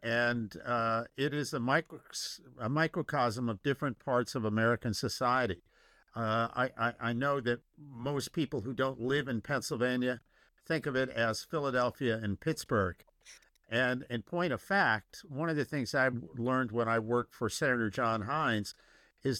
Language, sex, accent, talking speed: English, male, American, 160 wpm